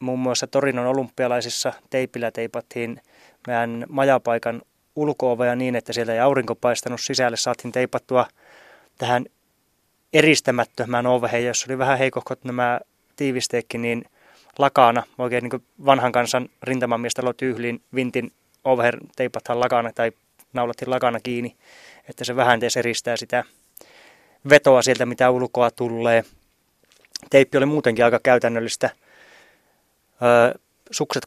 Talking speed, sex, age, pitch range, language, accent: 125 wpm, male, 20-39, 120-130 Hz, Finnish, native